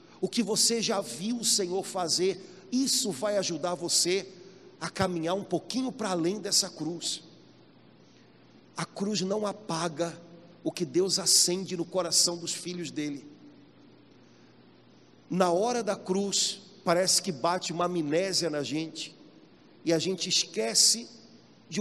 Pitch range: 175-225 Hz